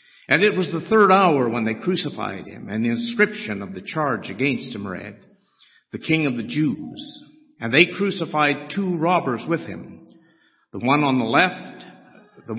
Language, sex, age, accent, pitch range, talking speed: English, male, 60-79, American, 125-200 Hz, 175 wpm